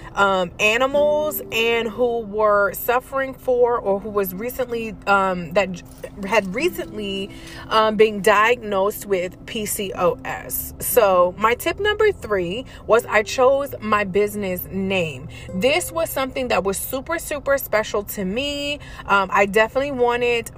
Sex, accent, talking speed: female, American, 130 wpm